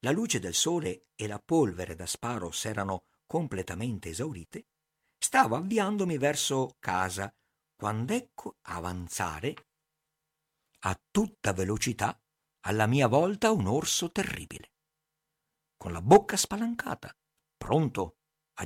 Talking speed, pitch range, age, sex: 110 wpm, 100-155 Hz, 50-69, male